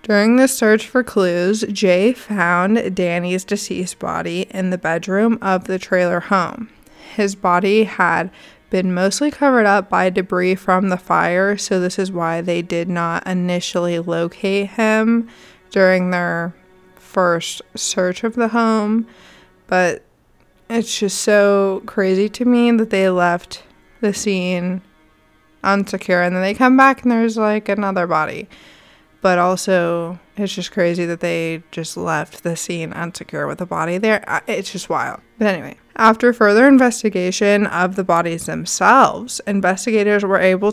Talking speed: 145 wpm